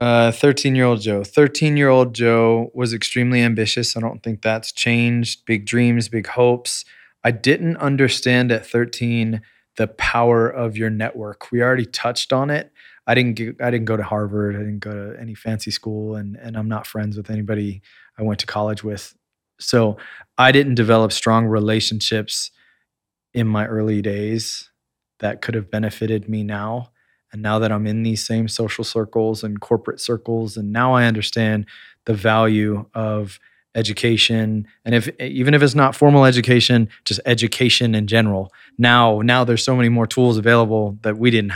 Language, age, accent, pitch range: English, 20-39, American, 110-120 Hz